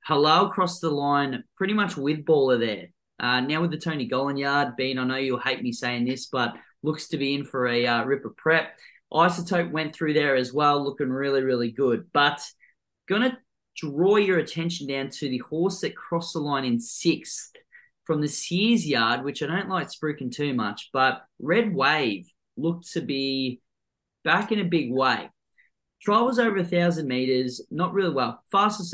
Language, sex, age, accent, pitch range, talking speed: English, male, 20-39, Australian, 125-165 Hz, 190 wpm